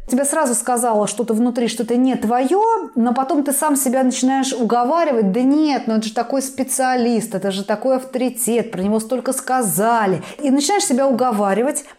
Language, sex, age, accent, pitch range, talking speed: Russian, female, 20-39, native, 215-265 Hz, 170 wpm